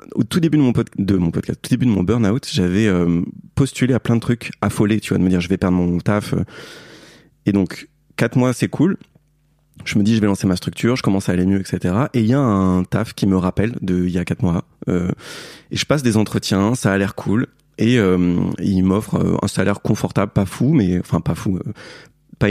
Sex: male